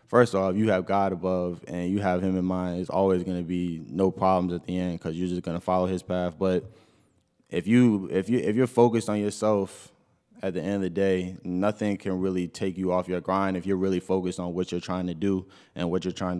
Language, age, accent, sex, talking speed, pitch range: English, 20-39, American, male, 250 wpm, 90-100 Hz